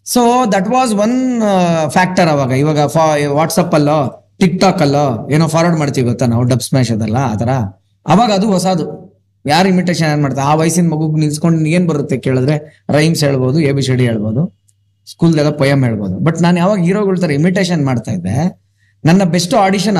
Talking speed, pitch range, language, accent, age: 175 wpm, 125-180 Hz, Kannada, native, 20-39